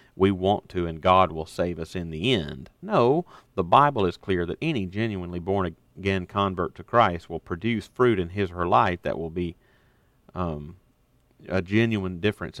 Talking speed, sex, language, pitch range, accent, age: 185 wpm, male, English, 85-110 Hz, American, 40-59